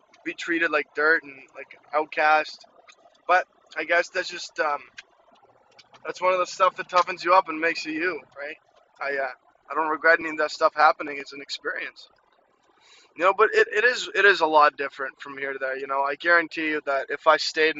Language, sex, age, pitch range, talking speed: English, male, 20-39, 135-155 Hz, 215 wpm